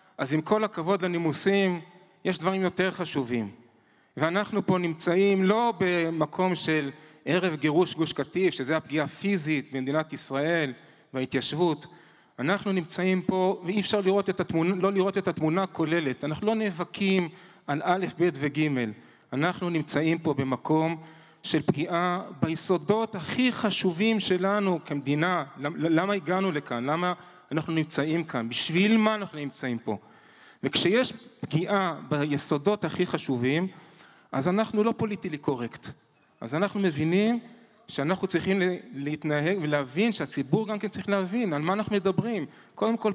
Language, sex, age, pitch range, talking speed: Hebrew, male, 30-49, 155-205 Hz, 135 wpm